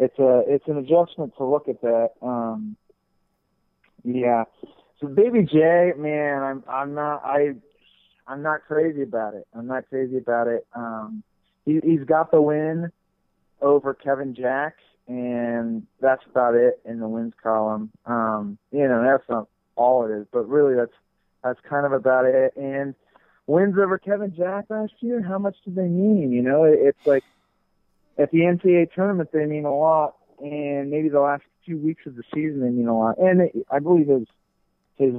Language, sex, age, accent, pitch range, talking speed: English, male, 30-49, American, 120-150 Hz, 180 wpm